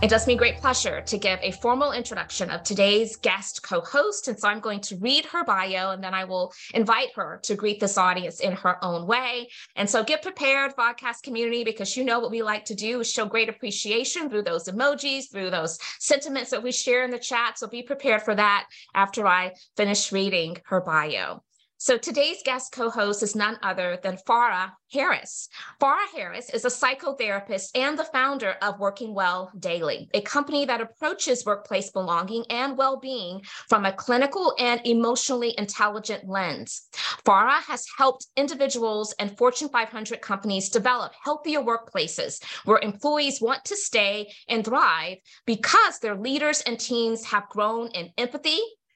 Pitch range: 200-265 Hz